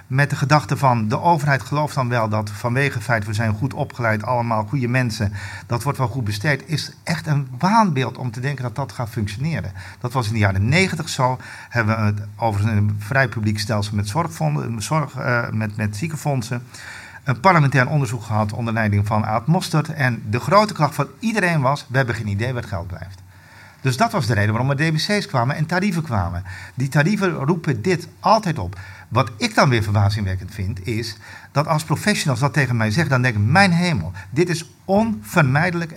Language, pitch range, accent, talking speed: Dutch, 110-160 Hz, Dutch, 200 wpm